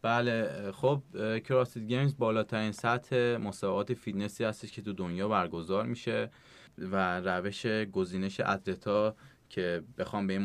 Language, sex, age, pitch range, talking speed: Persian, male, 20-39, 95-120 Hz, 125 wpm